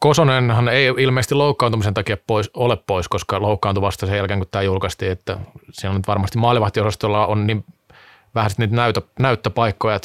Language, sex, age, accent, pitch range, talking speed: Finnish, male, 20-39, native, 105-125 Hz, 155 wpm